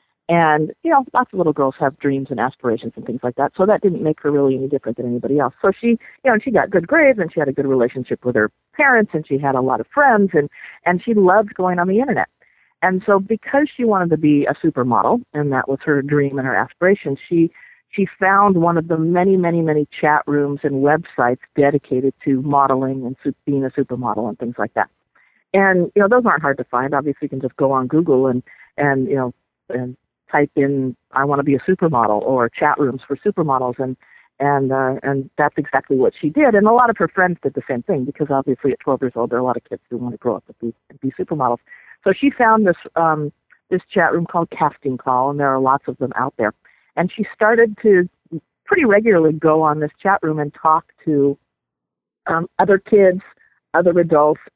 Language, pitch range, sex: English, 135-180 Hz, female